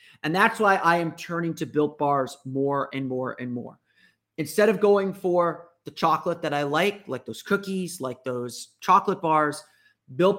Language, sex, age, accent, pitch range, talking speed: English, male, 30-49, American, 140-185 Hz, 180 wpm